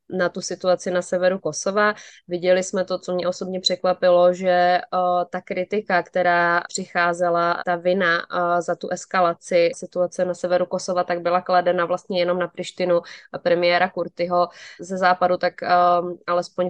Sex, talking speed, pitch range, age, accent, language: female, 155 wpm, 175-190 Hz, 20-39, native, Czech